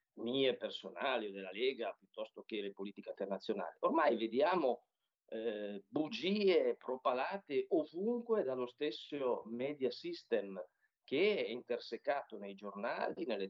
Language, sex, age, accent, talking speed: Italian, male, 50-69, native, 115 wpm